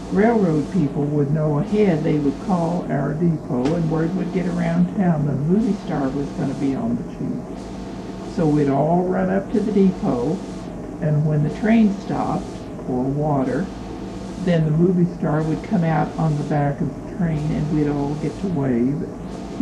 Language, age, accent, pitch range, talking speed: English, 60-79, American, 145-185 Hz, 185 wpm